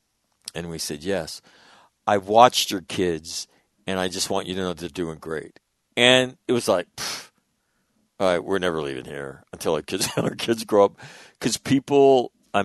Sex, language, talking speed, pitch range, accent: male, English, 185 wpm, 95-120 Hz, American